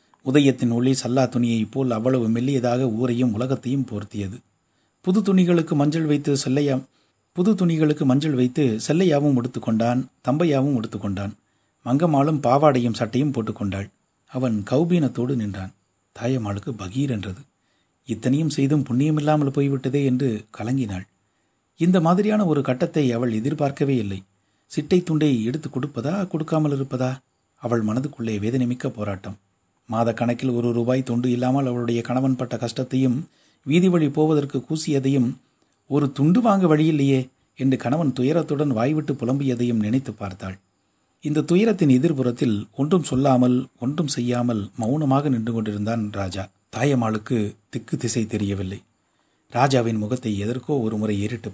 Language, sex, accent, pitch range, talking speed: Tamil, male, native, 110-145 Hz, 115 wpm